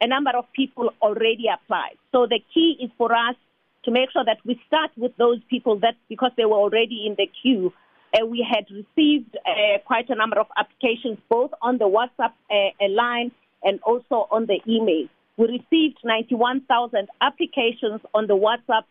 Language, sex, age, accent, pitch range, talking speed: English, female, 40-59, South African, 210-250 Hz, 180 wpm